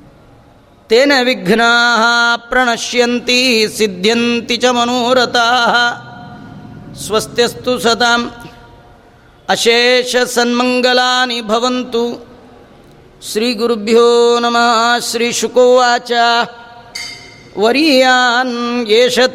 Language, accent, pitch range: Kannada, native, 235-245 Hz